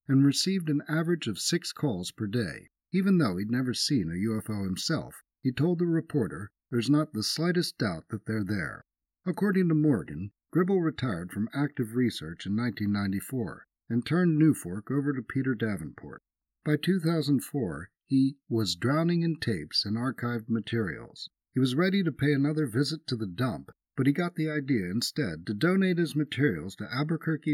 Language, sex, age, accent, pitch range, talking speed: English, male, 50-69, American, 110-155 Hz, 170 wpm